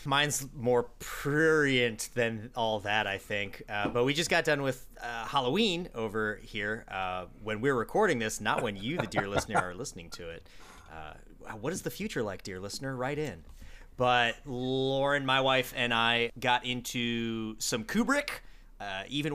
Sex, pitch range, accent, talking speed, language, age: male, 105-140 Hz, American, 175 wpm, English, 30-49